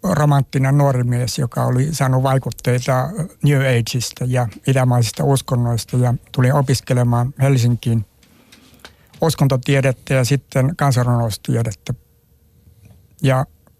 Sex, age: male, 60-79